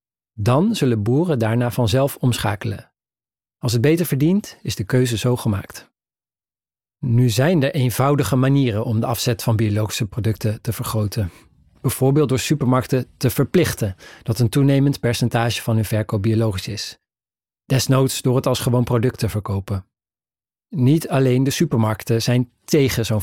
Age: 40-59